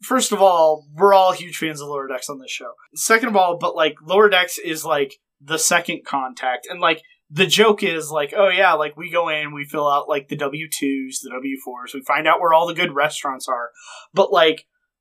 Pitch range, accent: 145-190 Hz, American